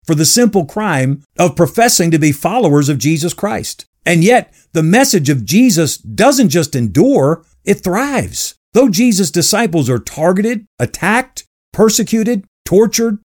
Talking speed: 140 wpm